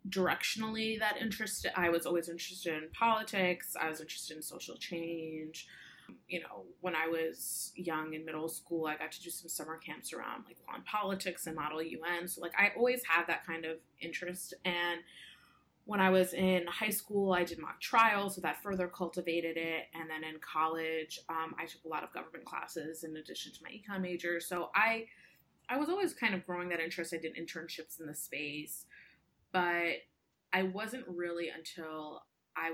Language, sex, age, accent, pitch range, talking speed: English, female, 20-39, American, 160-190 Hz, 185 wpm